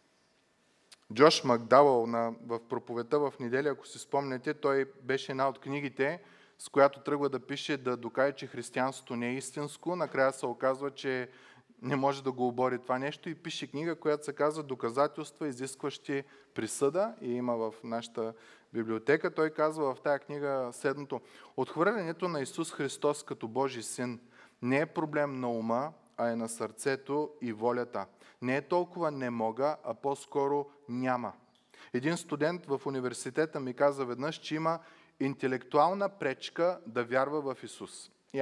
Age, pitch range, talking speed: 20-39, 125-155 Hz, 155 wpm